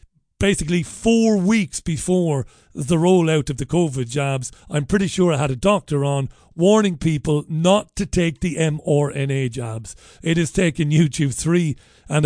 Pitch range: 140-185 Hz